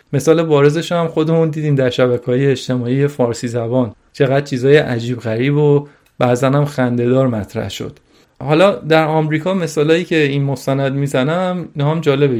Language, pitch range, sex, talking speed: Persian, 125-155 Hz, male, 155 wpm